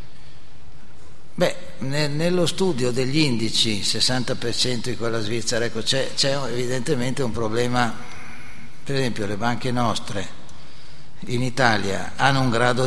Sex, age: male, 60-79